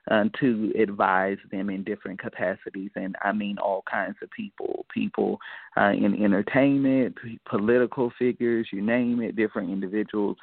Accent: American